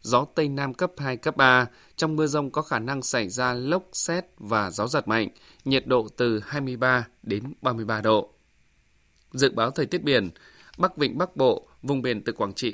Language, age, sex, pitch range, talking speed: Vietnamese, 20-39, male, 120-150 Hz, 200 wpm